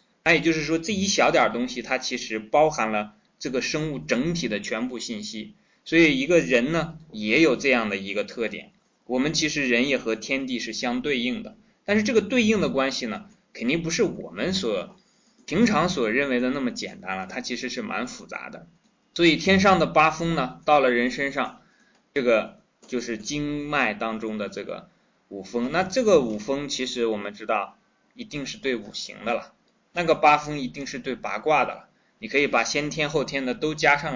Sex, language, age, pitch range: male, Chinese, 20-39, 120-170 Hz